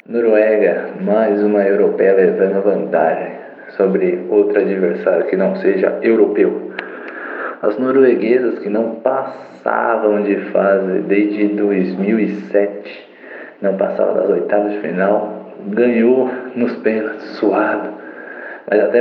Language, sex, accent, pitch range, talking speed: Portuguese, male, Brazilian, 100-135 Hz, 105 wpm